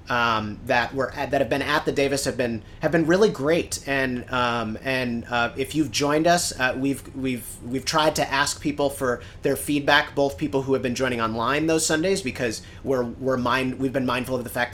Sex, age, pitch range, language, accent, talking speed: male, 30-49, 120-145 Hz, English, American, 220 wpm